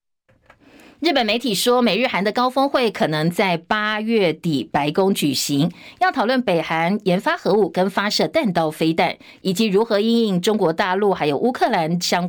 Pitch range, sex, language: 175-240 Hz, female, Chinese